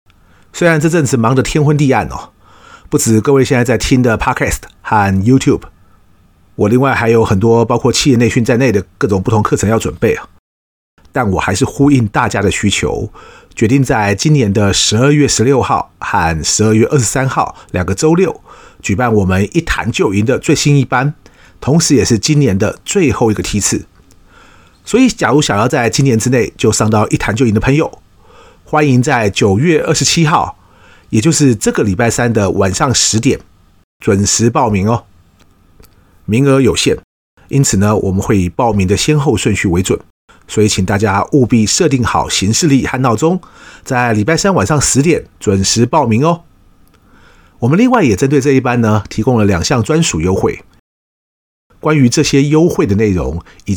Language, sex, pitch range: Chinese, male, 100-140 Hz